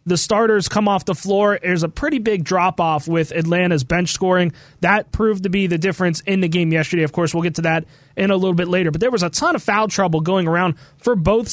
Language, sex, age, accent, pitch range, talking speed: English, male, 20-39, American, 175-215 Hz, 250 wpm